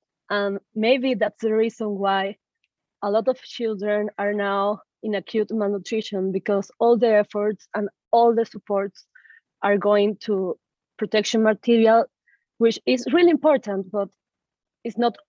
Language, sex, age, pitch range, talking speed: English, female, 20-39, 200-230 Hz, 135 wpm